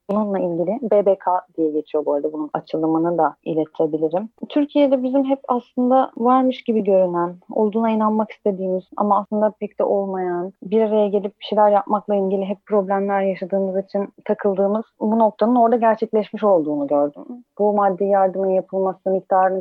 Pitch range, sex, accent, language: 165-210 Hz, female, native, Turkish